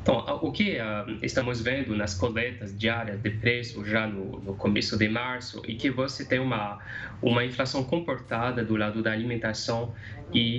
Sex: male